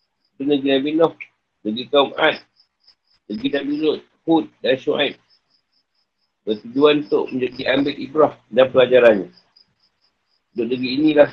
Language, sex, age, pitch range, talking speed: Malay, male, 50-69, 120-150 Hz, 100 wpm